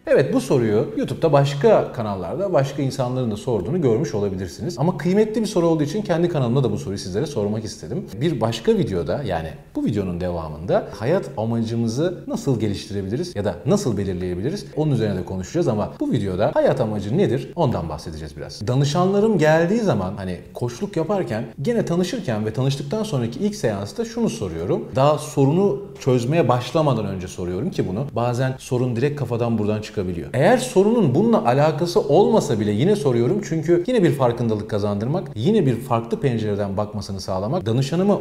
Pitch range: 105-165 Hz